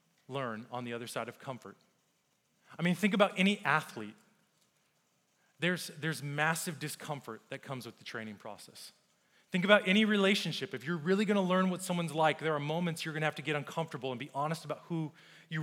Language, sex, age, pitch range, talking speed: English, male, 30-49, 135-175 Hz, 200 wpm